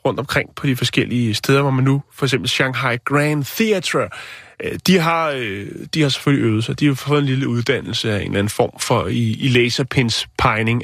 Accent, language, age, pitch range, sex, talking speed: native, Danish, 30-49, 125-155 Hz, male, 195 wpm